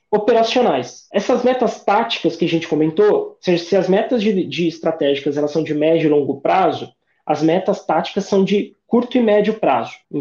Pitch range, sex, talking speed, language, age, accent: 160-205 Hz, male, 195 wpm, Portuguese, 20-39, Brazilian